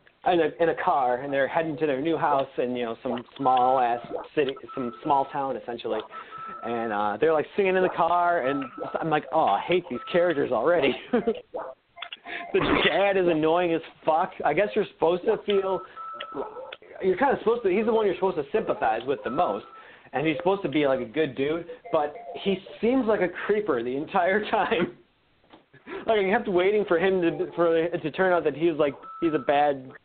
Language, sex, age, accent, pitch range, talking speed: English, male, 30-49, American, 150-215 Hz, 200 wpm